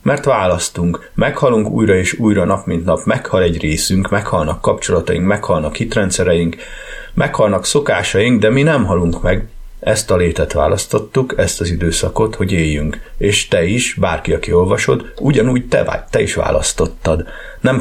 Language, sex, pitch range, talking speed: Hungarian, male, 85-115 Hz, 150 wpm